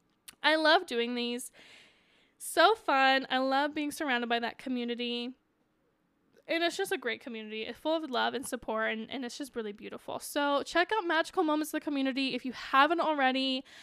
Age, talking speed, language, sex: 10-29, 185 wpm, English, female